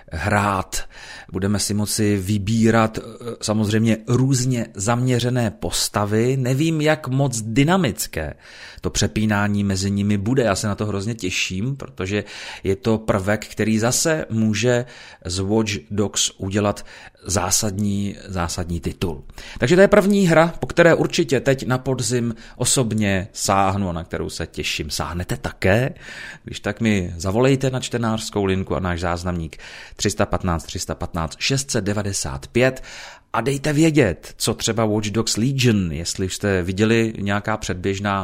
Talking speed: 130 wpm